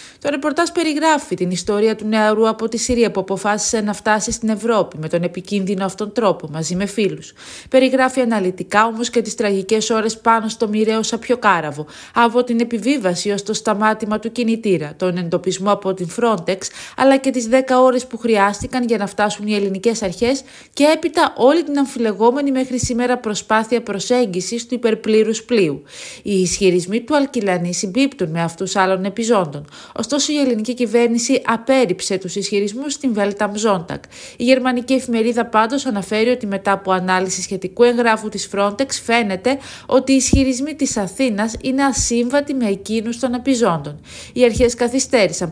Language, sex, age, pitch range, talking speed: Greek, female, 30-49, 195-245 Hz, 160 wpm